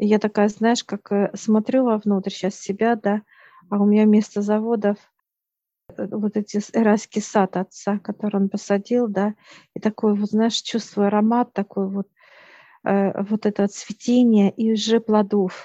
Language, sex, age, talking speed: Russian, female, 50-69, 140 wpm